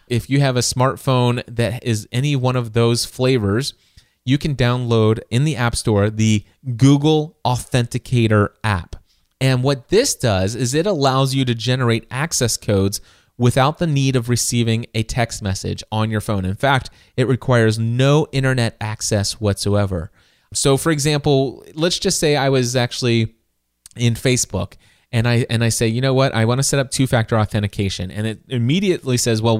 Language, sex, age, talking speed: English, male, 30-49, 170 wpm